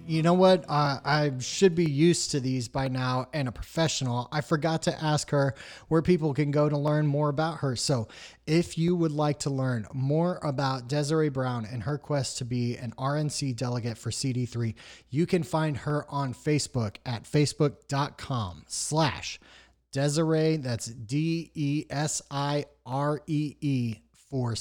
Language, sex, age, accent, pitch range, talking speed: English, male, 30-49, American, 120-150 Hz, 155 wpm